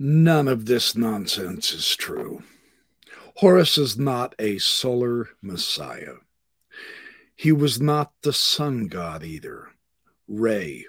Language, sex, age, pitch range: English, male, 60-79, 115-150 Hz